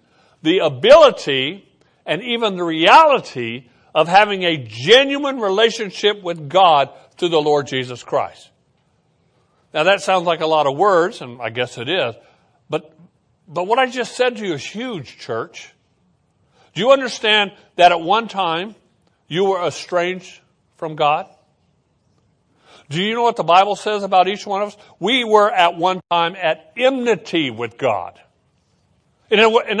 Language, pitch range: English, 165-225 Hz